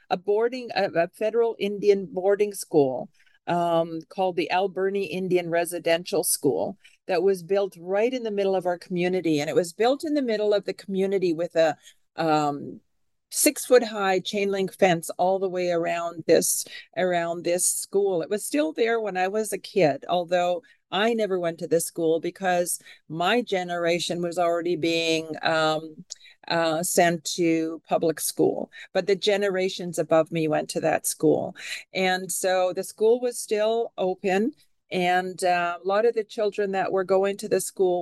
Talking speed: 170 wpm